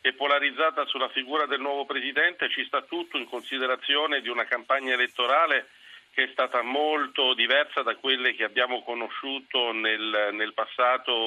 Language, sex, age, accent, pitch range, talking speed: Italian, male, 50-69, native, 120-145 Hz, 155 wpm